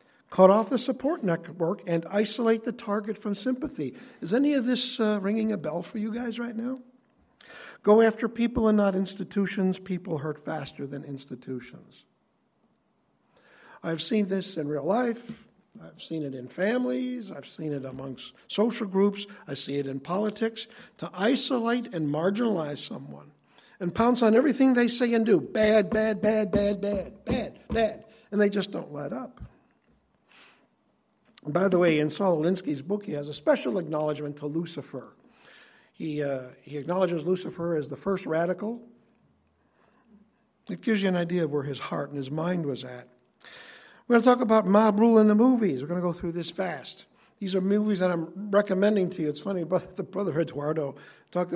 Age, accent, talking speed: 60-79, American, 180 wpm